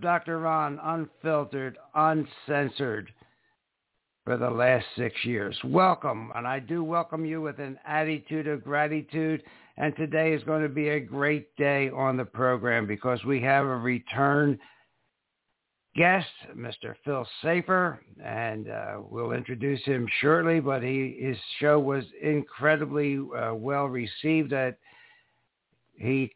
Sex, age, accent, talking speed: male, 60-79, American, 130 wpm